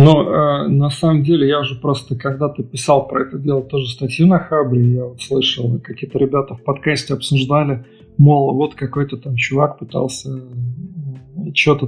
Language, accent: Russian, native